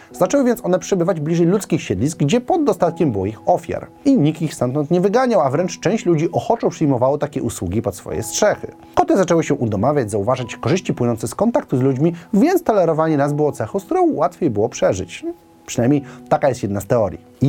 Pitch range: 120-180 Hz